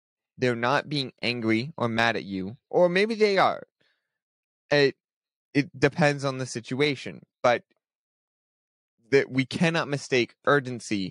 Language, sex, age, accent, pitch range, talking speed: English, male, 20-39, American, 115-145 Hz, 130 wpm